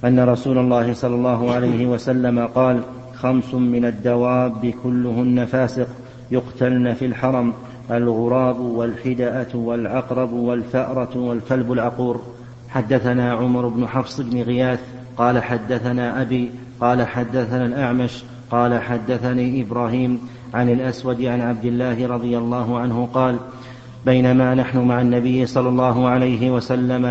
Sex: male